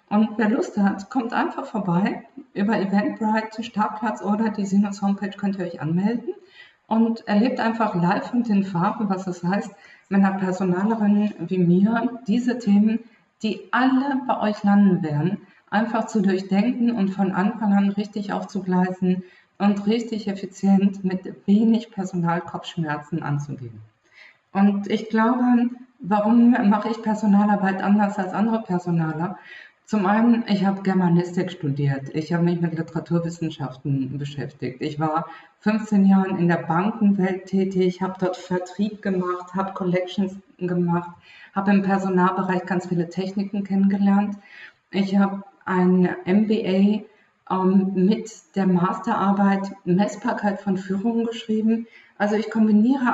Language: German